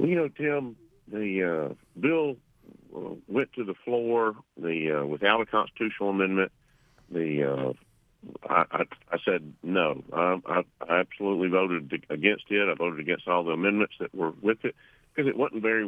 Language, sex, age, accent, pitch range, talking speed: English, male, 50-69, American, 90-110 Hz, 170 wpm